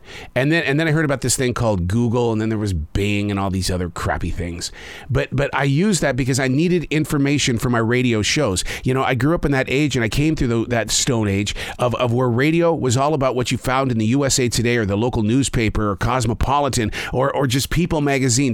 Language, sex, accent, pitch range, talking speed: English, male, American, 125-195 Hz, 245 wpm